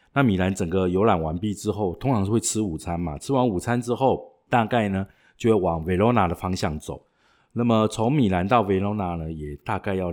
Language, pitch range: Chinese, 85-110 Hz